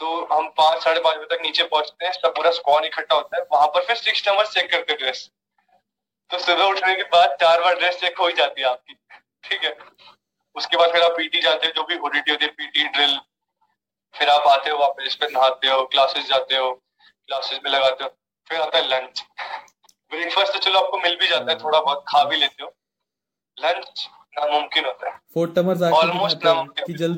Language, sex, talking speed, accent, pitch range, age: Hindi, male, 95 wpm, native, 150-180 Hz, 20-39